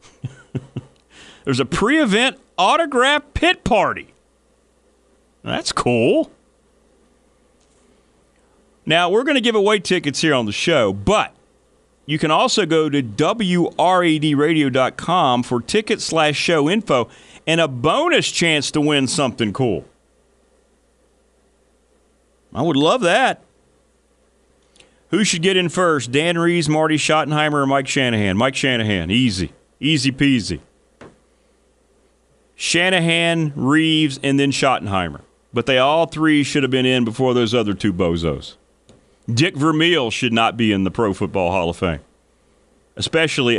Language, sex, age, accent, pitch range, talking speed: English, male, 40-59, American, 110-160 Hz, 125 wpm